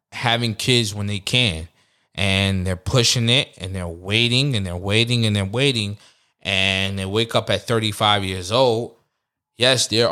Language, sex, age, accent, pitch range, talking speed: English, male, 20-39, American, 95-125 Hz, 165 wpm